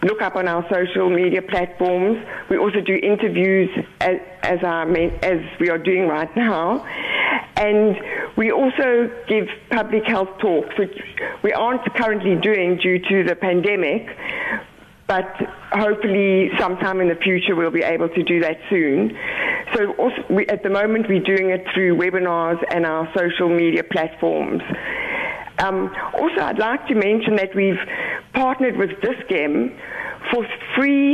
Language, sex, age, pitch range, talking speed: English, female, 60-79, 180-225 Hz, 145 wpm